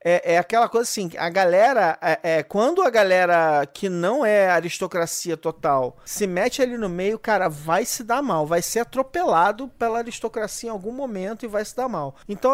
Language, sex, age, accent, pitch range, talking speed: English, male, 40-59, Brazilian, 175-230 Hz, 195 wpm